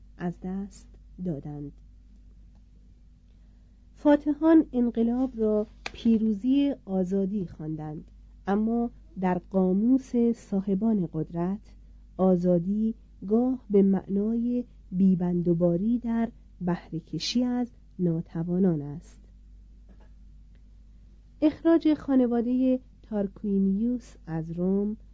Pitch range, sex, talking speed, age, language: 175-235 Hz, female, 70 wpm, 40-59, Persian